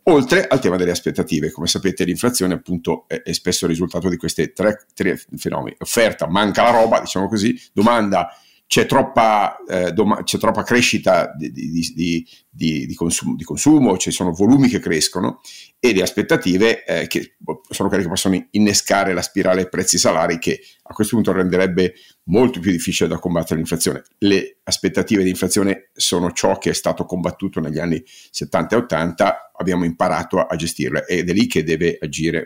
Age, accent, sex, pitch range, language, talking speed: 50-69, native, male, 85-105 Hz, Italian, 185 wpm